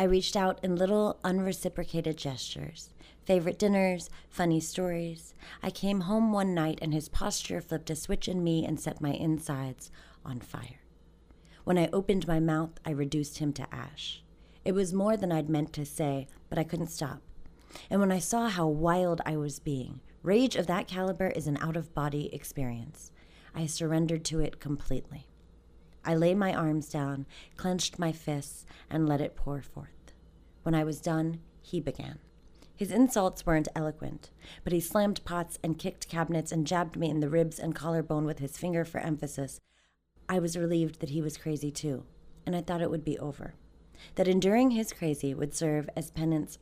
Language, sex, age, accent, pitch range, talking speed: English, female, 30-49, American, 145-180 Hz, 180 wpm